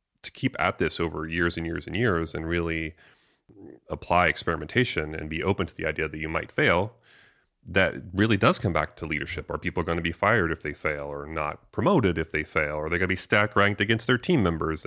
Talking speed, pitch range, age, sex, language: 230 wpm, 80-100 Hz, 30-49, male, English